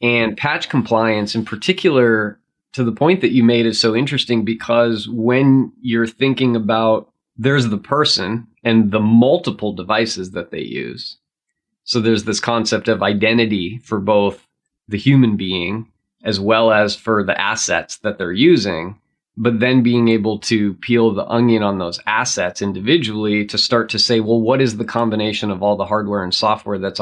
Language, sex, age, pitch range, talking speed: English, male, 20-39, 105-120 Hz, 170 wpm